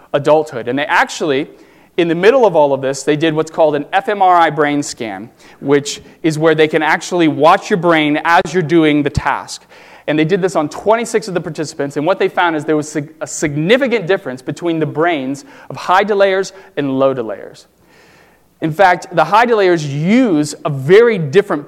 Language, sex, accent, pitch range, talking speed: English, male, American, 140-185 Hz, 195 wpm